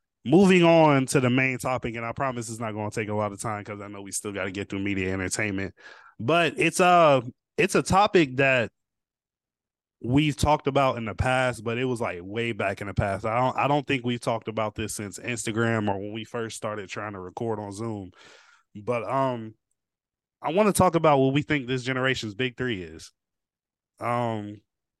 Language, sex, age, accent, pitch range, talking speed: English, male, 20-39, American, 105-130 Hz, 210 wpm